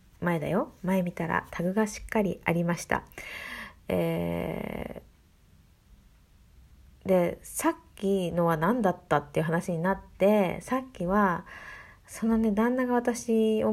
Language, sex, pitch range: Japanese, female, 175-235 Hz